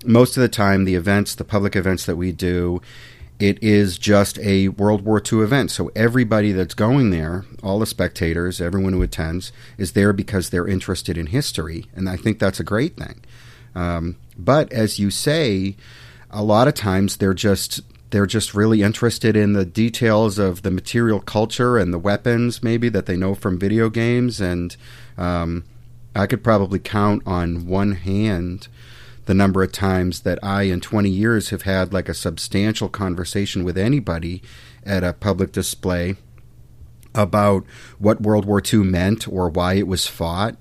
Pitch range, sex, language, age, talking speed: 90-110 Hz, male, English, 40-59, 175 wpm